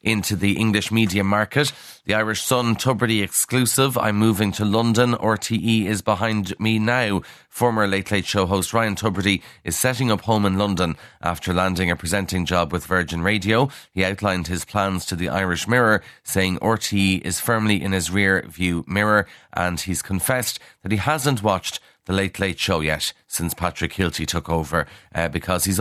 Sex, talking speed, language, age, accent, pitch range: male, 180 wpm, English, 30-49, Irish, 90-110 Hz